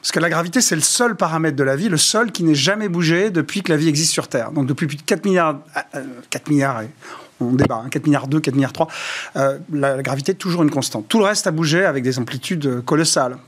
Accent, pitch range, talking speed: French, 145-190 Hz, 250 wpm